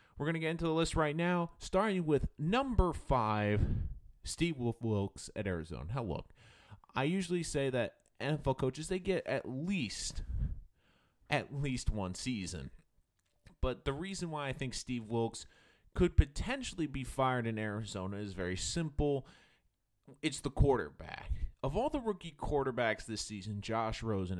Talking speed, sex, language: 150 wpm, male, English